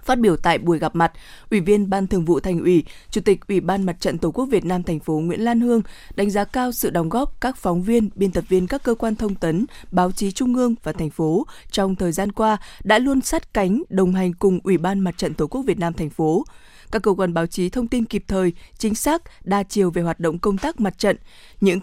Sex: female